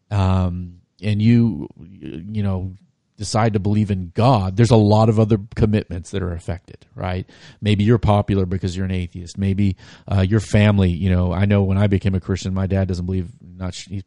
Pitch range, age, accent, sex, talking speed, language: 95-110 Hz, 40-59, American, male, 195 wpm, English